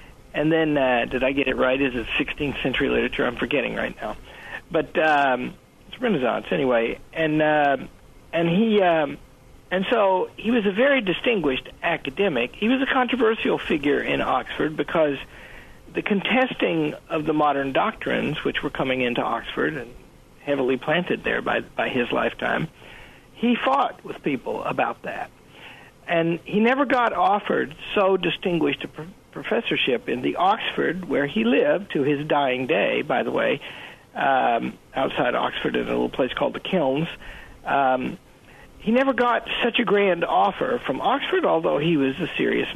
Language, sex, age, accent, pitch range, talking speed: English, male, 50-69, American, 140-225 Hz, 160 wpm